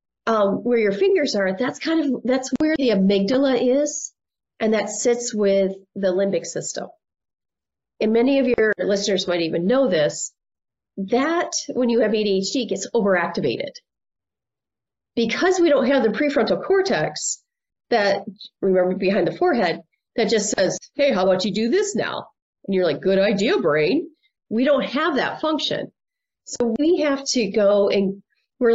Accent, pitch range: American, 200-310 Hz